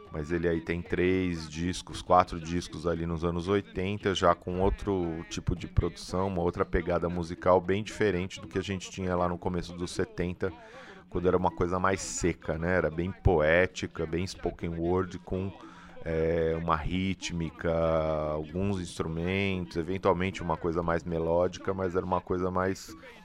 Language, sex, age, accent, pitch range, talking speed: English, male, 30-49, Brazilian, 85-95 Hz, 160 wpm